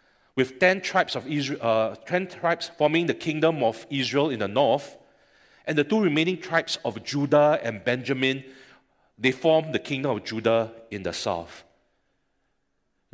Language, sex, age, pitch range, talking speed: English, male, 40-59, 115-150 Hz, 160 wpm